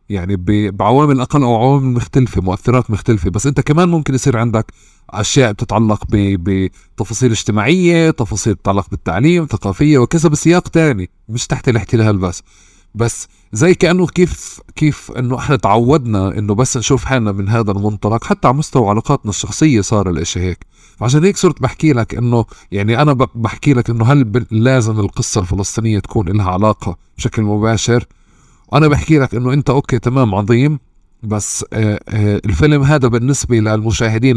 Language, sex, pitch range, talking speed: Arabic, male, 100-130 Hz, 155 wpm